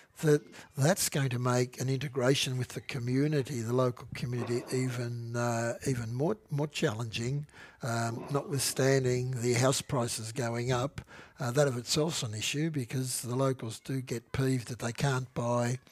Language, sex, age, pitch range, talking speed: English, male, 60-79, 120-145 Hz, 160 wpm